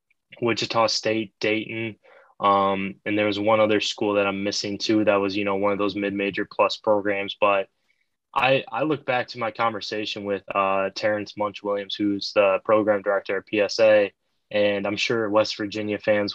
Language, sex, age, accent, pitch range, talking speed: English, male, 10-29, American, 100-110 Hz, 175 wpm